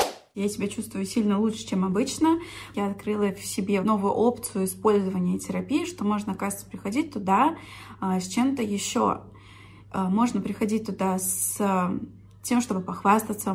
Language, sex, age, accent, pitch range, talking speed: Russian, female, 20-39, native, 200-240 Hz, 135 wpm